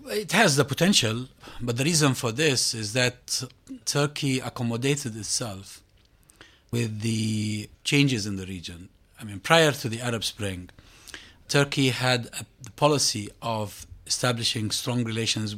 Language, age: English, 40-59